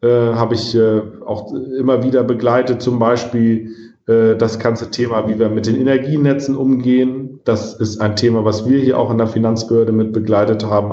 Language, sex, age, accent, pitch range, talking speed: German, male, 40-59, German, 110-130 Hz, 170 wpm